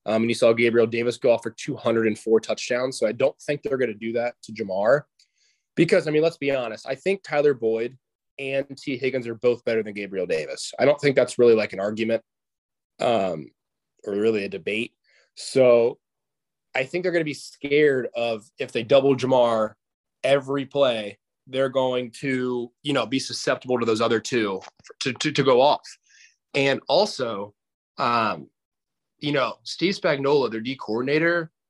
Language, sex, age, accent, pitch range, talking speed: English, male, 20-39, American, 115-150 Hz, 180 wpm